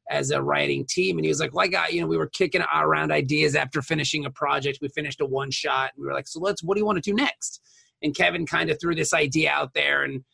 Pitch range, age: 135-180 Hz, 30-49